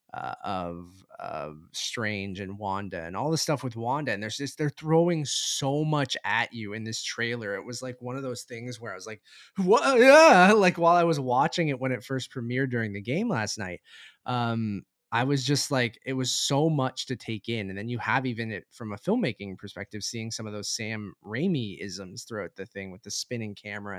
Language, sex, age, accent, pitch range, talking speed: English, male, 20-39, American, 110-140 Hz, 225 wpm